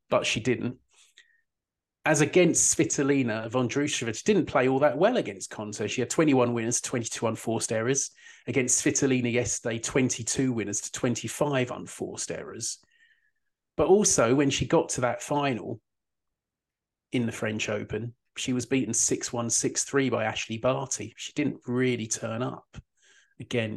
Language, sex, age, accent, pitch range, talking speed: English, male, 30-49, British, 115-140 Hz, 145 wpm